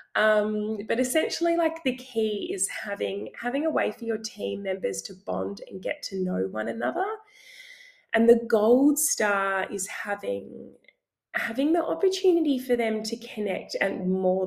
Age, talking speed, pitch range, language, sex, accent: 20-39, 160 wpm, 185-260 Hz, English, female, Australian